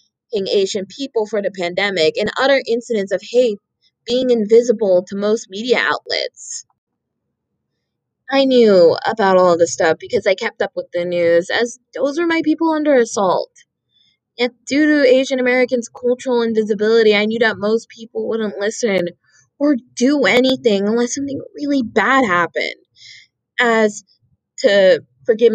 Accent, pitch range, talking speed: American, 210-265 Hz, 145 wpm